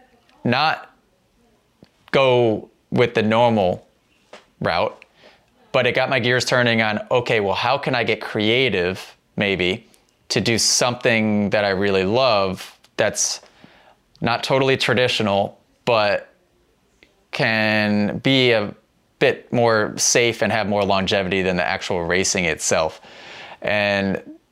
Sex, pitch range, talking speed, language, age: male, 100-125 Hz, 120 wpm, English, 20-39